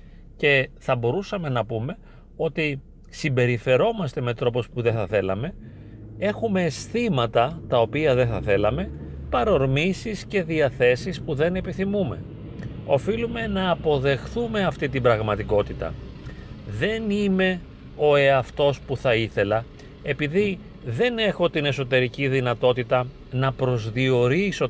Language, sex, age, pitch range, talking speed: Greek, male, 40-59, 120-160 Hz, 115 wpm